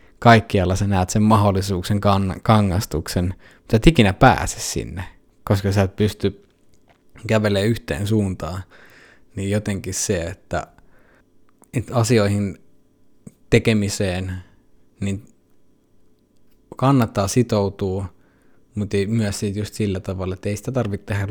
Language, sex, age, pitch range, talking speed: Finnish, male, 20-39, 95-115 Hz, 120 wpm